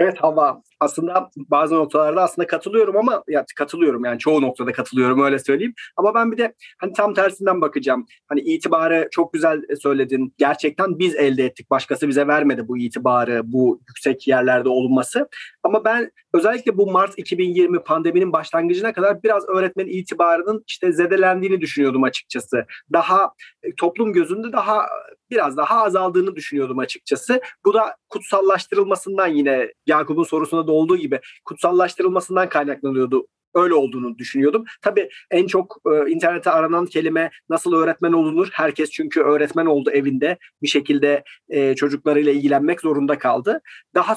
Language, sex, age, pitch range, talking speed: Turkish, male, 30-49, 150-200 Hz, 140 wpm